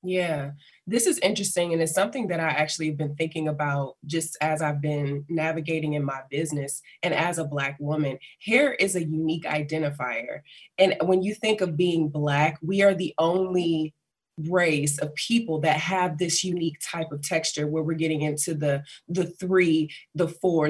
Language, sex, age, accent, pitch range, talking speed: English, female, 20-39, American, 150-180 Hz, 180 wpm